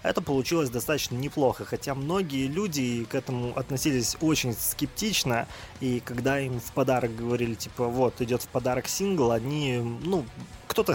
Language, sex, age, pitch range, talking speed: Russian, male, 20-39, 120-150 Hz, 150 wpm